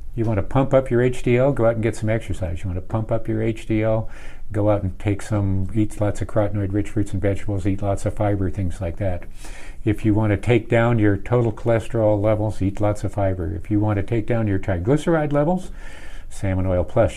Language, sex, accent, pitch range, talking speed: English, male, American, 95-110 Hz, 230 wpm